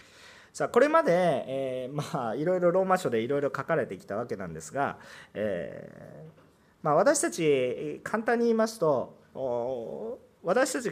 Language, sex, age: Japanese, male, 40-59